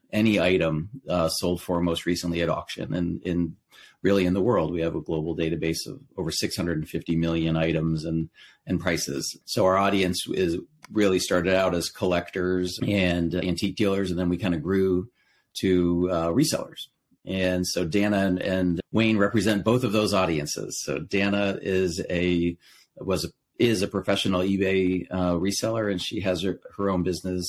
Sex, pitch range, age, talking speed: male, 85-95 Hz, 40-59, 170 wpm